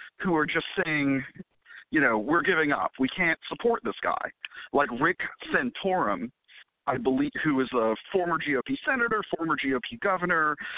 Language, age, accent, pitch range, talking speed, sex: English, 50-69, American, 140-220 Hz, 155 wpm, male